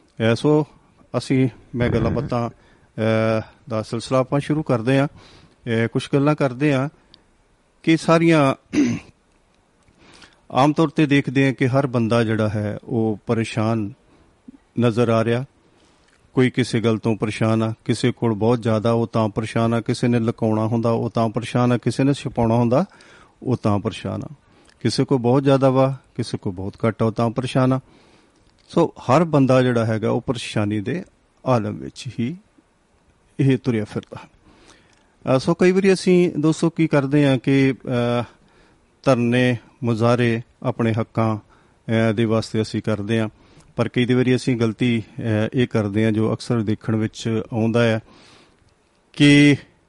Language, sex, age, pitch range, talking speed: Punjabi, male, 40-59, 110-135 Hz, 140 wpm